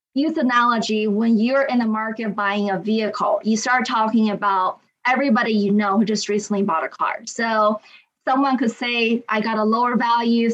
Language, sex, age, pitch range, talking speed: English, female, 20-39, 210-255 Hz, 180 wpm